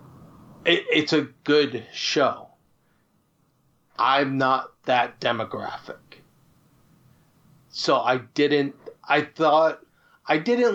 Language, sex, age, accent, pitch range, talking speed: English, male, 30-49, American, 120-145 Hz, 85 wpm